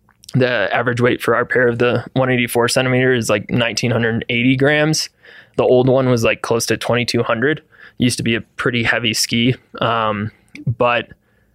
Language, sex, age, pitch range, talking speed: English, male, 20-39, 115-130 Hz, 165 wpm